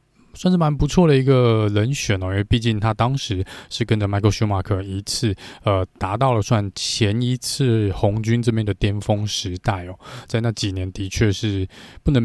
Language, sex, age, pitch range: Chinese, male, 20-39, 100-125 Hz